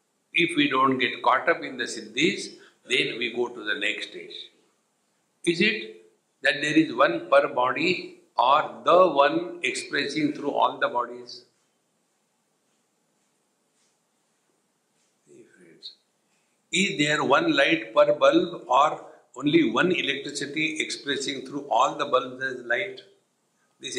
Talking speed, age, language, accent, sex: 125 wpm, 60-79, English, Indian, male